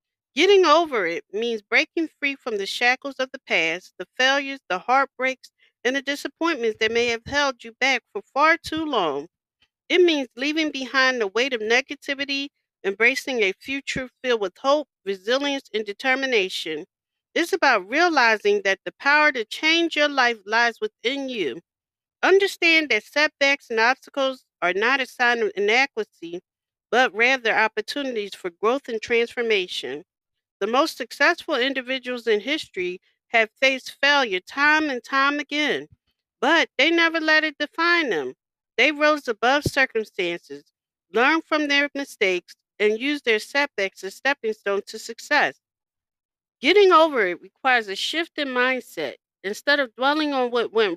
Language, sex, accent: English, female, American